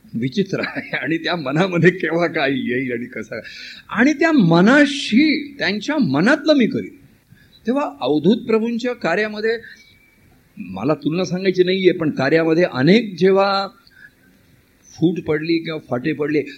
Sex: male